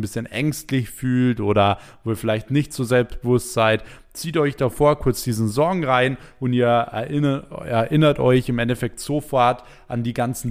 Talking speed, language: 165 wpm, German